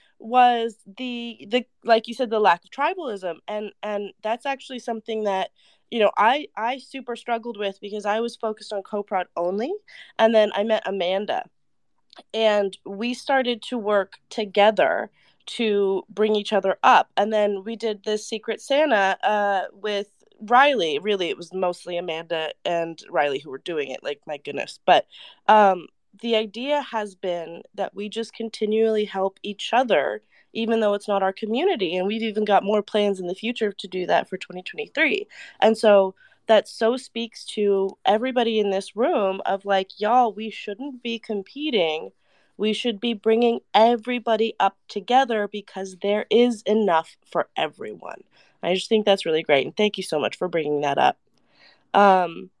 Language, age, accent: English, 20-39, American